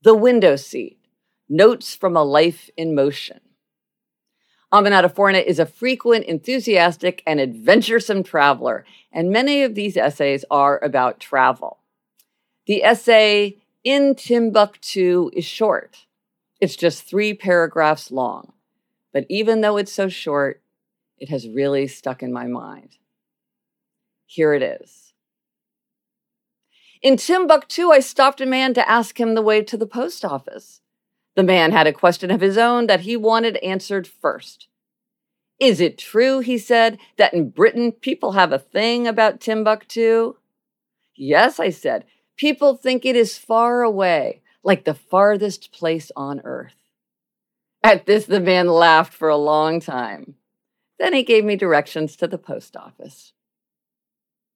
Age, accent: 50-69, American